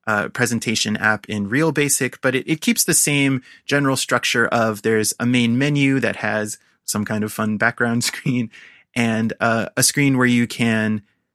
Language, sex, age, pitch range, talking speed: English, male, 30-49, 110-130 Hz, 180 wpm